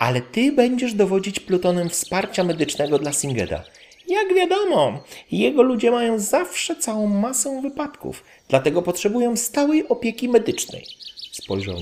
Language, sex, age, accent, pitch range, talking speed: Polish, male, 40-59, native, 95-150 Hz, 120 wpm